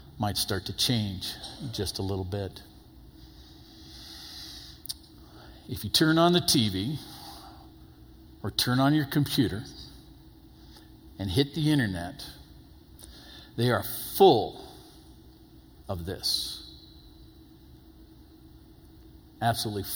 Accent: American